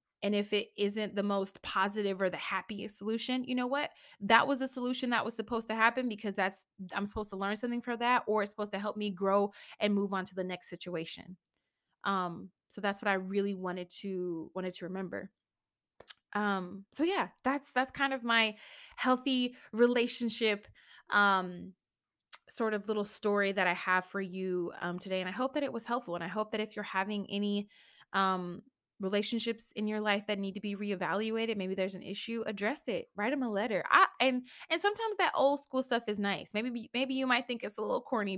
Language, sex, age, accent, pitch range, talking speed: English, female, 20-39, American, 195-235 Hz, 210 wpm